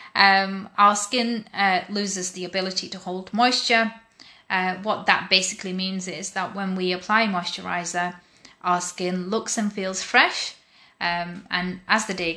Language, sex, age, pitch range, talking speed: English, female, 20-39, 180-210 Hz, 155 wpm